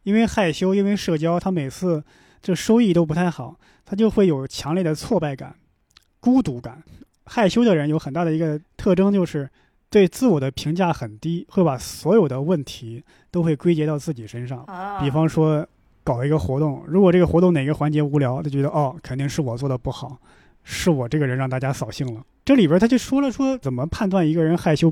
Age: 20-39